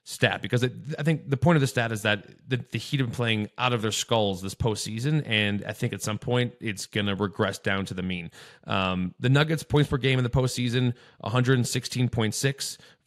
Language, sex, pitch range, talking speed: English, male, 105-125 Hz, 220 wpm